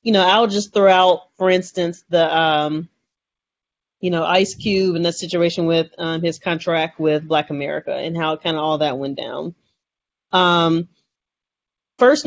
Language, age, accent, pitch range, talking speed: English, 30-49, American, 160-190 Hz, 170 wpm